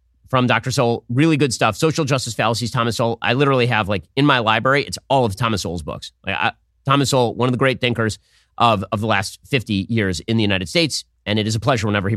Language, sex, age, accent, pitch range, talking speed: English, male, 30-49, American, 100-160 Hz, 245 wpm